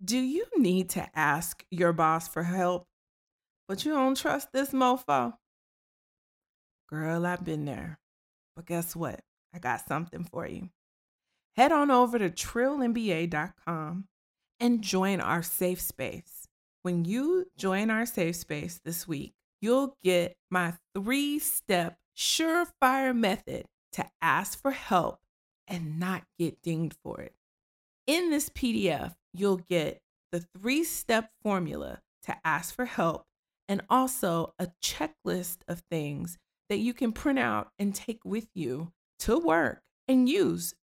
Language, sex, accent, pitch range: English, female, American, 170-235 Hz